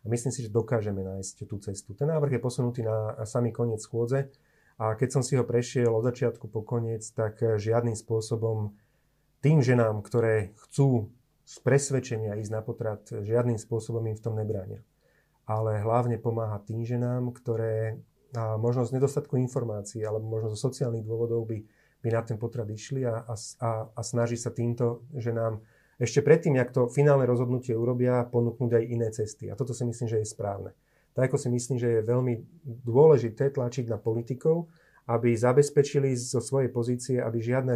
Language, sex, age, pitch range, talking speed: Slovak, male, 30-49, 115-130 Hz, 175 wpm